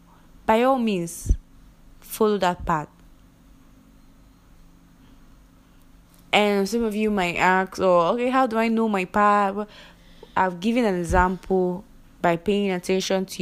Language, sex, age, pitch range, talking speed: English, female, 20-39, 170-210 Hz, 125 wpm